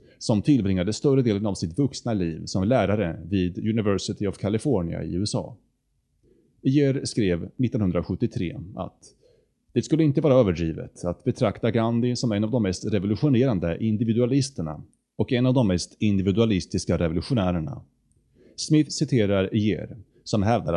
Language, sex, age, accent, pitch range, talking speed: Swedish, male, 30-49, Norwegian, 95-125 Hz, 135 wpm